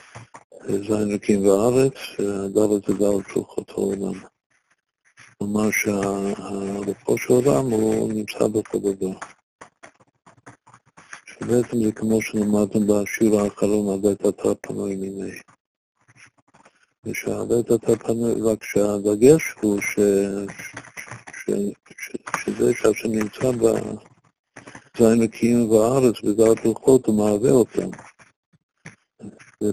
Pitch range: 100-110 Hz